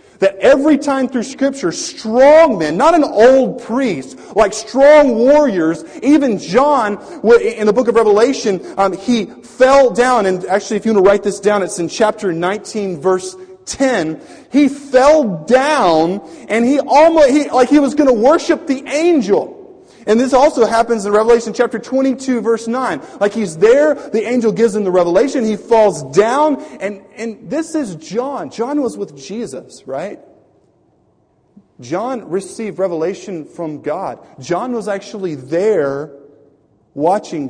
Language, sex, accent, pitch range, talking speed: English, male, American, 185-265 Hz, 150 wpm